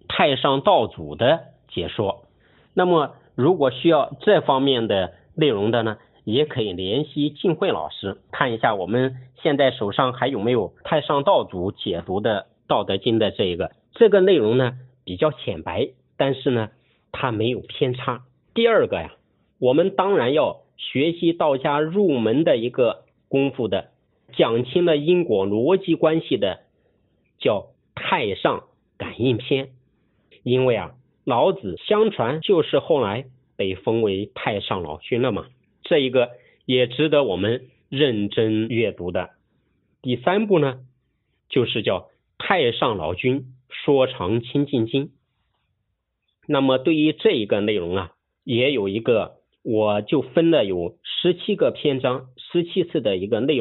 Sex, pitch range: male, 120-160 Hz